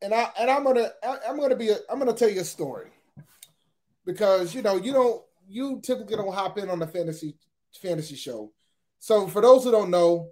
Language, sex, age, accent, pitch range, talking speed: English, male, 30-49, American, 170-220 Hz, 215 wpm